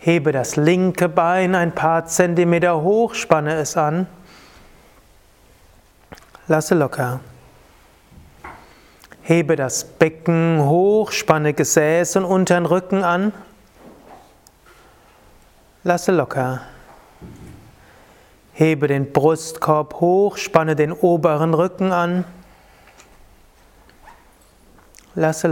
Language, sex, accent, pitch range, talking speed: German, male, German, 130-180 Hz, 80 wpm